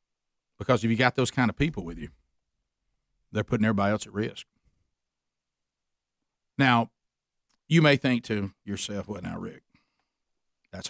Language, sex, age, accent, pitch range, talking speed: English, male, 50-69, American, 100-125 Hz, 145 wpm